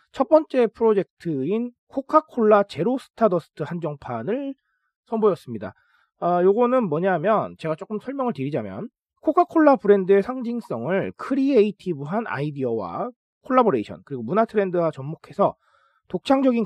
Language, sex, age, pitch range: Korean, male, 40-59, 155-235 Hz